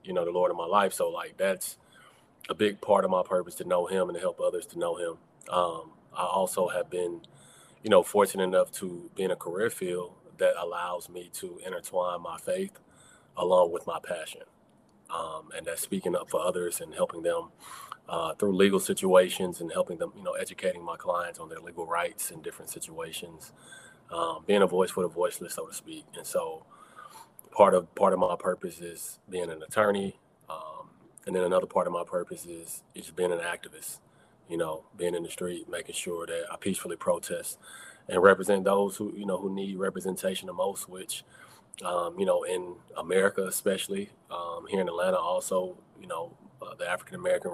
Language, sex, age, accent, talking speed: English, male, 30-49, American, 195 wpm